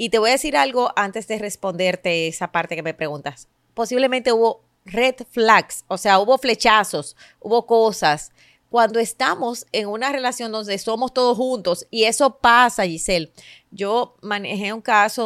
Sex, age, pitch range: female, 30-49, 185-240 Hz